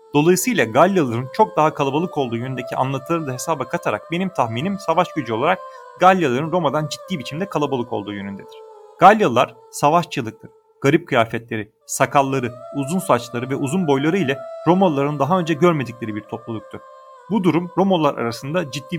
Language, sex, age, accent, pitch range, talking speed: Turkish, male, 40-59, native, 130-185 Hz, 140 wpm